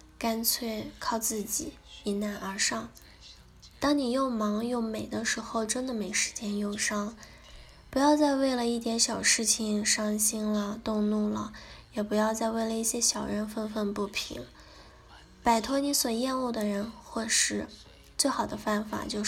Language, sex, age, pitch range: Chinese, female, 10-29, 210-245 Hz